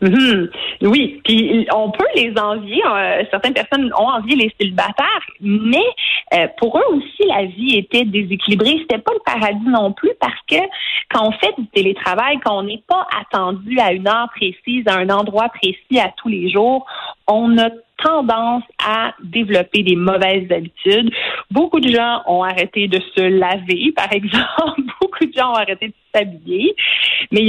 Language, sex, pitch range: French, female, 195-260 Hz